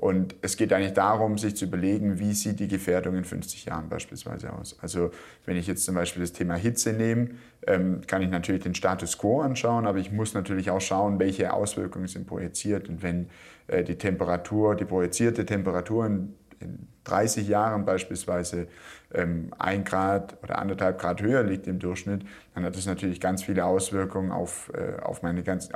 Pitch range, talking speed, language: 90-105 Hz, 185 wpm, German